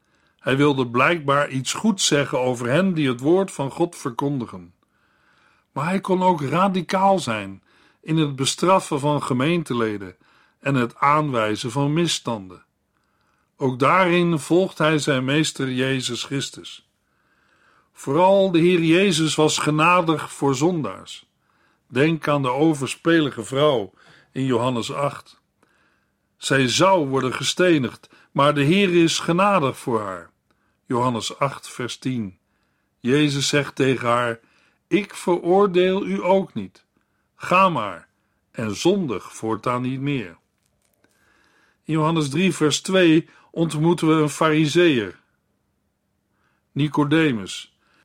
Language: Dutch